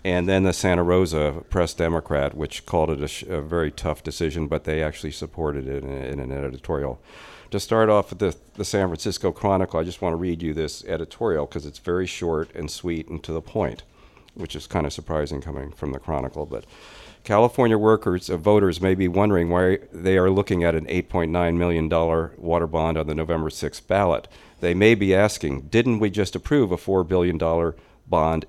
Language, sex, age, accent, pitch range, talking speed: English, male, 50-69, American, 80-95 Hz, 205 wpm